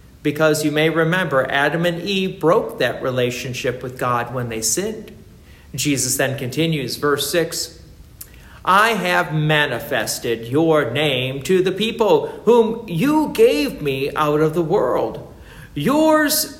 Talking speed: 135 wpm